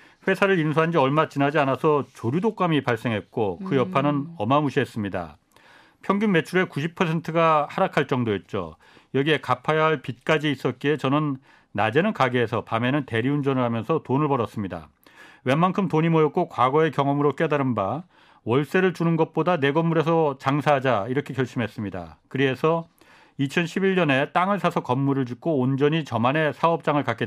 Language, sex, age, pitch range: Korean, male, 40-59, 130-165 Hz